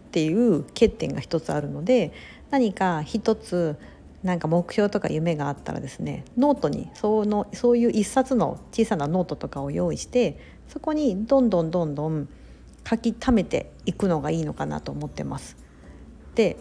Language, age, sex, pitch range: Japanese, 50-69, female, 155-230 Hz